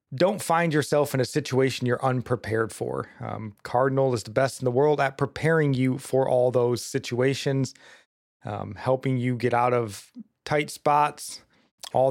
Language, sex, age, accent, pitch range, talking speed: English, male, 30-49, American, 120-145 Hz, 165 wpm